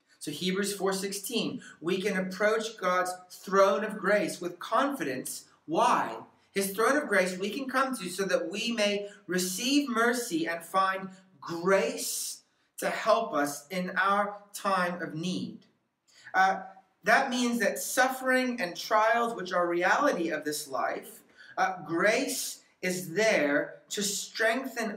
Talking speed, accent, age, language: 135 wpm, American, 40-59, English